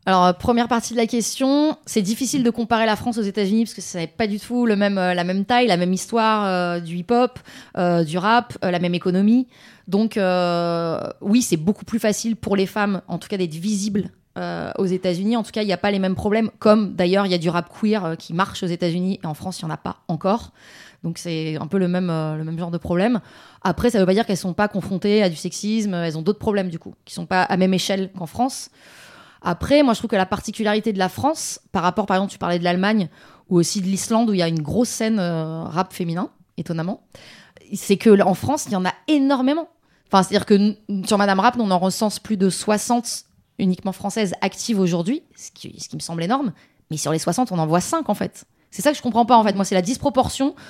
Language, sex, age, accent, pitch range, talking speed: French, female, 20-39, Belgian, 180-230 Hz, 260 wpm